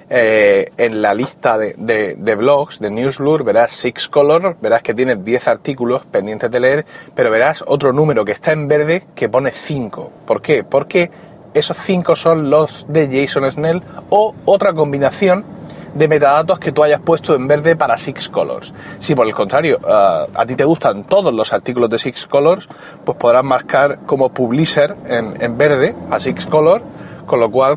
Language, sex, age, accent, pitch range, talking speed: Spanish, male, 30-49, Spanish, 125-165 Hz, 185 wpm